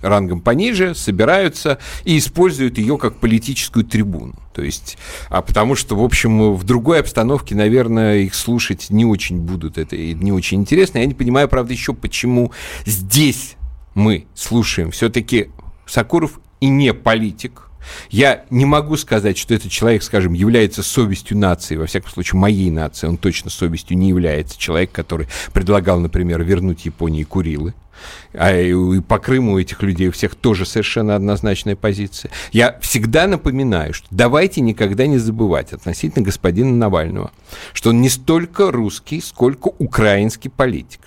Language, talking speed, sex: Russian, 150 wpm, male